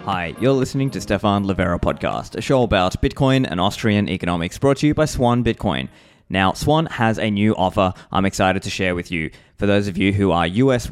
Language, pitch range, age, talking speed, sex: English, 95-125 Hz, 20-39, 215 wpm, male